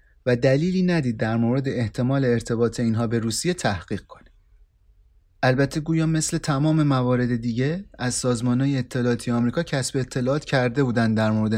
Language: Persian